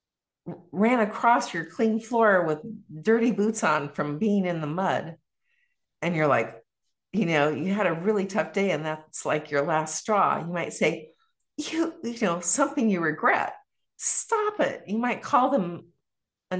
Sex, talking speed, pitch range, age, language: female, 170 wpm, 155-220 Hz, 50-69, English